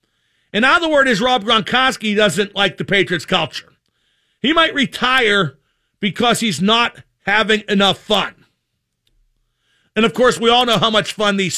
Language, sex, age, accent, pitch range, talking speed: English, male, 50-69, American, 200-260 Hz, 150 wpm